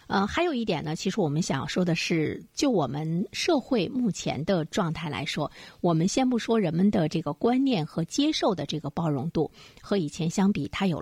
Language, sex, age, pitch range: Chinese, female, 50-69, 160-225 Hz